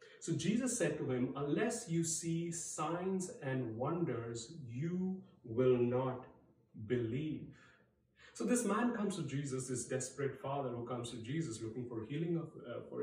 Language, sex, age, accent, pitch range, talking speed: English, male, 30-49, Indian, 120-165 Hz, 155 wpm